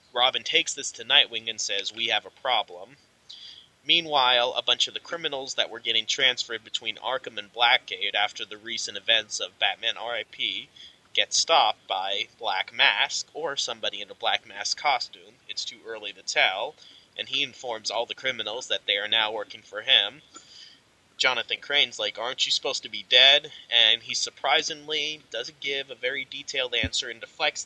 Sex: male